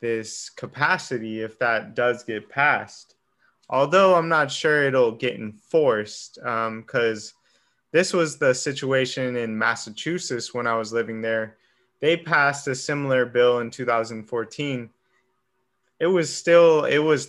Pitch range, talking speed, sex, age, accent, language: 120-140 Hz, 135 wpm, male, 20-39, American, English